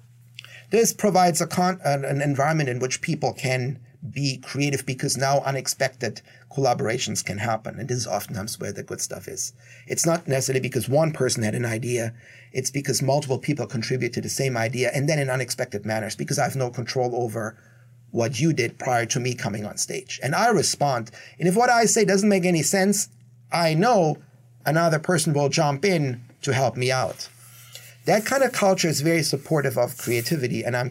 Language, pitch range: English, 125-150 Hz